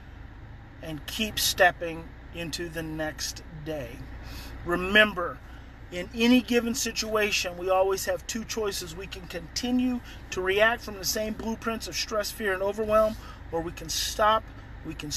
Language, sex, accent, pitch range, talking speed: English, male, American, 170-230 Hz, 145 wpm